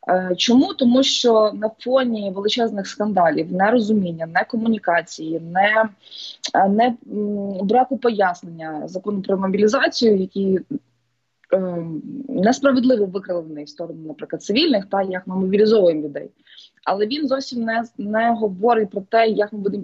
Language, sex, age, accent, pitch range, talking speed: Ukrainian, female, 20-39, native, 185-240 Hz, 125 wpm